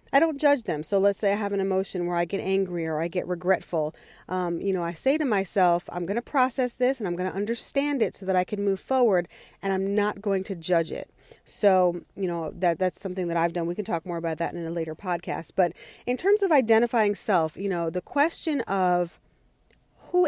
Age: 40-59